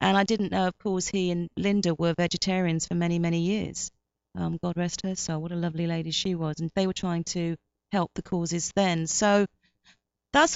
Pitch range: 175-205 Hz